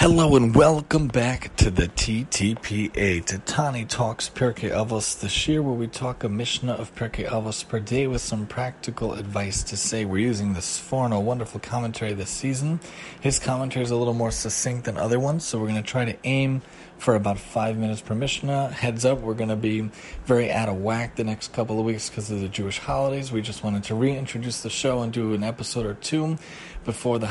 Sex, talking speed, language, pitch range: male, 210 wpm, English, 110-135 Hz